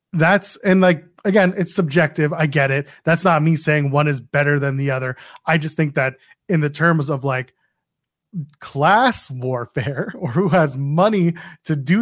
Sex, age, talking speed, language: male, 20-39, 180 wpm, English